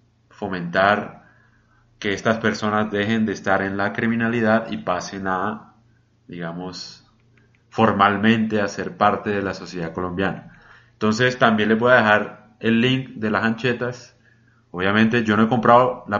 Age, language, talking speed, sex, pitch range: 30-49, Spanish, 145 wpm, male, 105-120 Hz